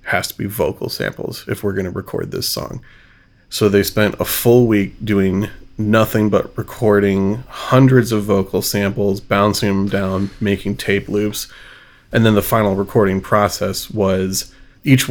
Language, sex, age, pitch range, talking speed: English, male, 30-49, 95-110 Hz, 160 wpm